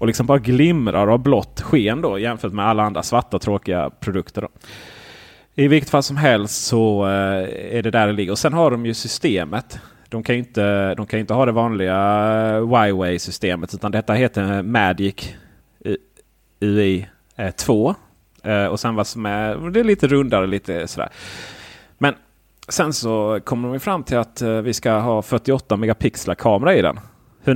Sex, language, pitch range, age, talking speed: male, Swedish, 100-125 Hz, 30-49, 165 wpm